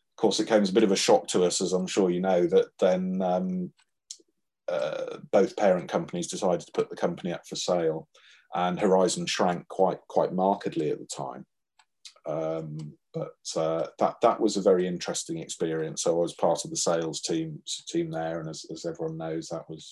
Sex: male